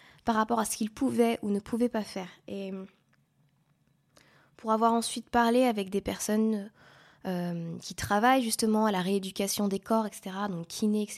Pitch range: 195-235 Hz